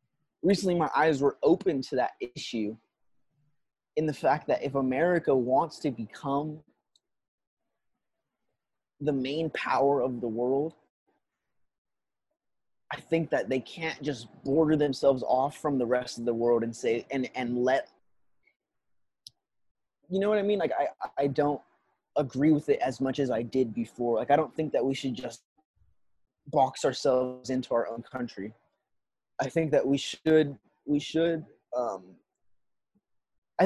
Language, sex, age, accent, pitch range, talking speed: English, male, 20-39, American, 125-155 Hz, 150 wpm